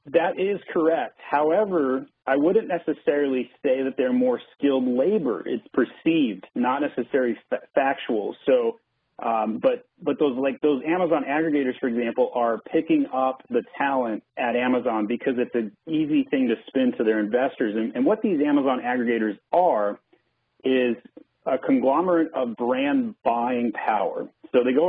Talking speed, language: 150 wpm, English